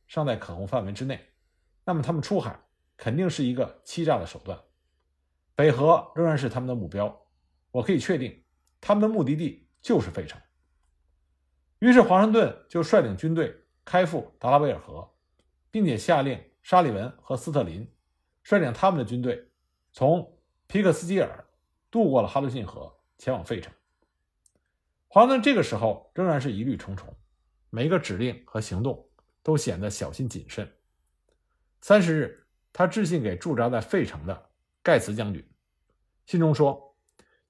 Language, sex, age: Chinese, male, 50-69